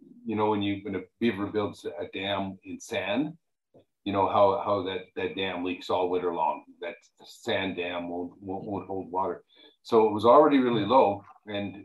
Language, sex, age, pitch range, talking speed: English, male, 50-69, 90-105 Hz, 185 wpm